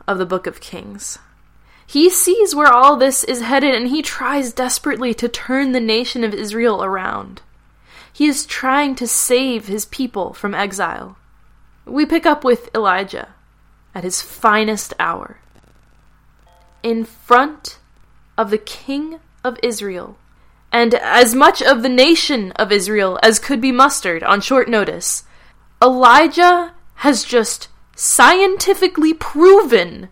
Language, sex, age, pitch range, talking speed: English, female, 10-29, 230-320 Hz, 135 wpm